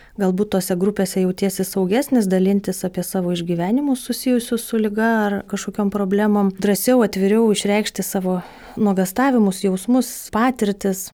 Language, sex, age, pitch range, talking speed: English, female, 20-39, 185-220 Hz, 120 wpm